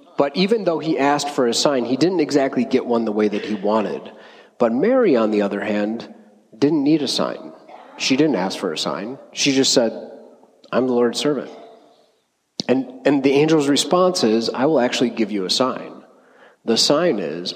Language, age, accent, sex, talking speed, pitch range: English, 30-49, American, male, 195 wpm, 120-155 Hz